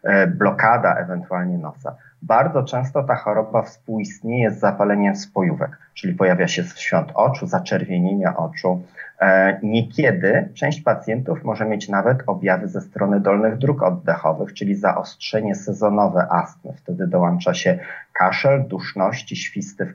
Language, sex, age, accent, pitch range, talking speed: Polish, male, 30-49, native, 95-125 Hz, 125 wpm